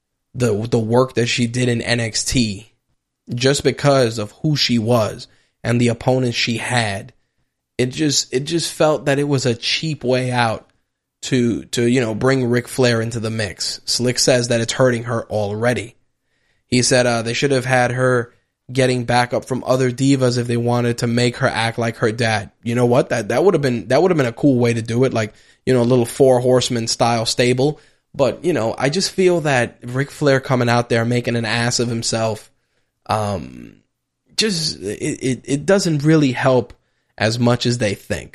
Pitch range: 115-130 Hz